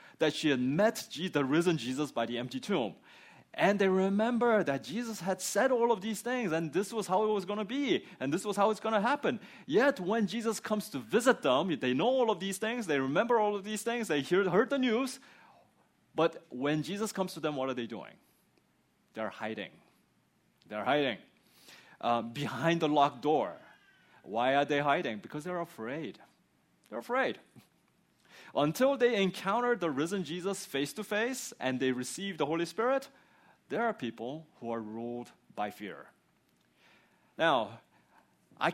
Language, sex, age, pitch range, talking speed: English, male, 30-49, 145-245 Hz, 175 wpm